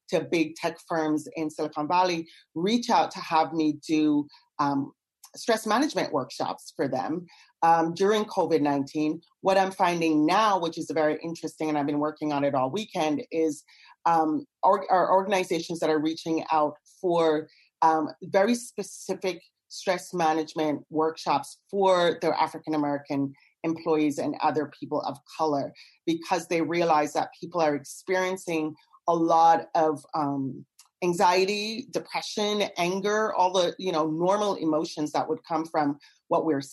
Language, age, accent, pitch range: English, 30-49, American, 155-180 Hz